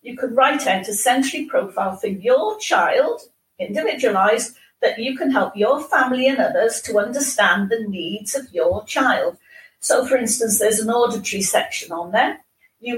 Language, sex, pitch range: English, female, 200-280 Hz